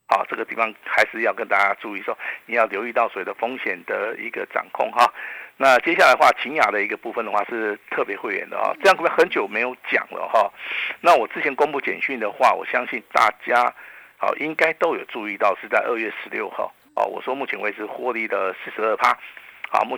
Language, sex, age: Chinese, male, 50-69